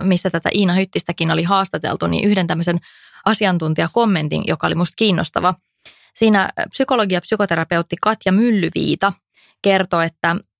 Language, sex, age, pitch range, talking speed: English, female, 20-39, 170-210 Hz, 125 wpm